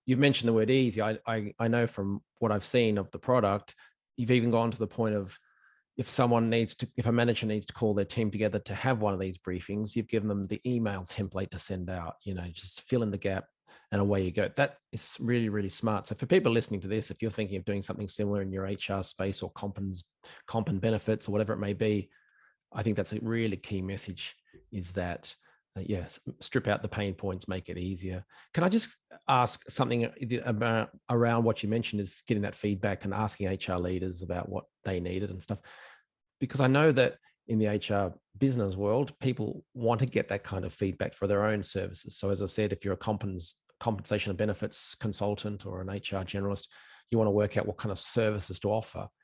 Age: 20-39